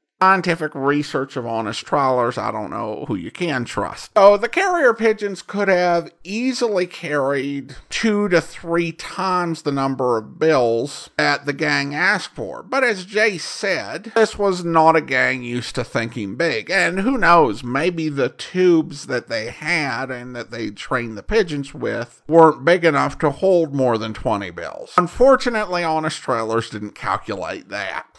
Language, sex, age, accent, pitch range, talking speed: English, male, 50-69, American, 140-215 Hz, 165 wpm